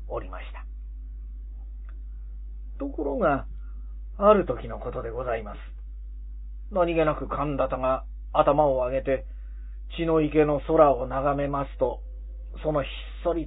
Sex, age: male, 40-59